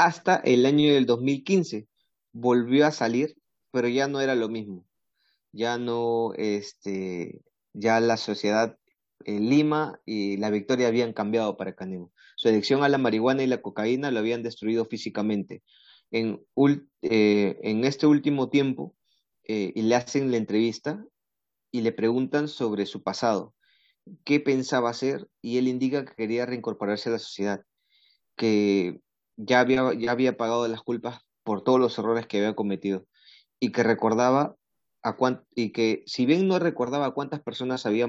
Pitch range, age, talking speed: 110-130 Hz, 30-49, 160 wpm